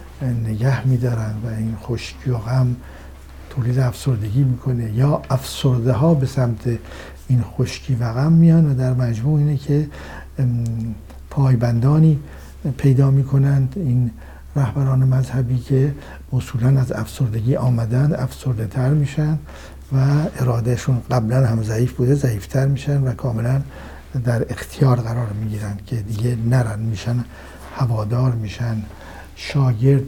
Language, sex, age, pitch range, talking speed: Persian, male, 60-79, 110-135 Hz, 120 wpm